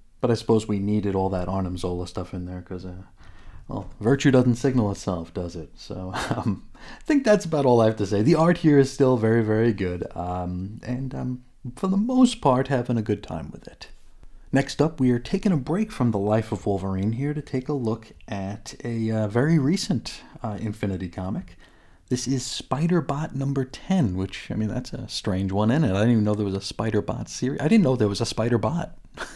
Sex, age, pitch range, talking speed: male, 30-49, 100-135 Hz, 225 wpm